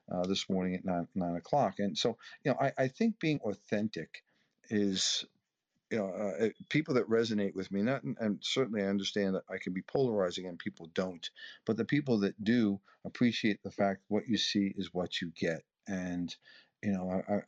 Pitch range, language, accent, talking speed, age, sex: 95-110 Hz, English, American, 200 wpm, 50-69, male